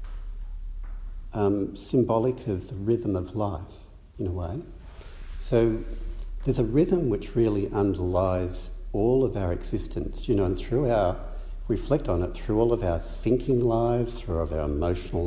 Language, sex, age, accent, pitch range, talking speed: English, male, 60-79, Australian, 80-105 Hz, 155 wpm